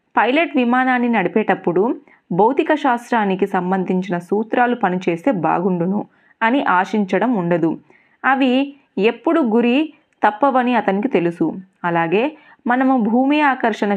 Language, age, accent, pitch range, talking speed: Telugu, 30-49, native, 180-245 Hz, 95 wpm